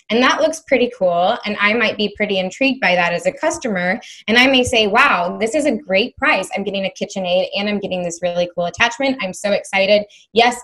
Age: 20-39